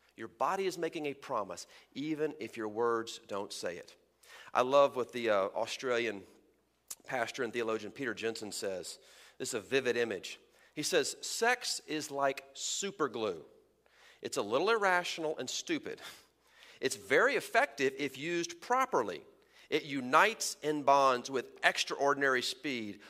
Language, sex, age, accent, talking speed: English, male, 40-59, American, 145 wpm